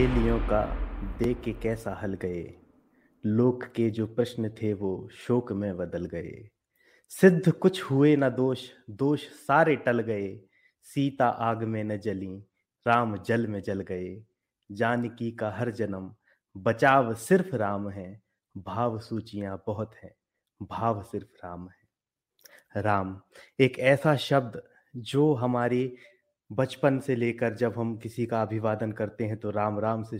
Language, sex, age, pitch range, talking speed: Hindi, male, 30-49, 100-125 Hz, 145 wpm